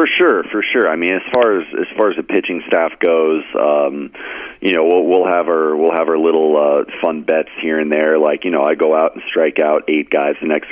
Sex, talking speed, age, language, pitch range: male, 260 wpm, 40-59, English, 75-80 Hz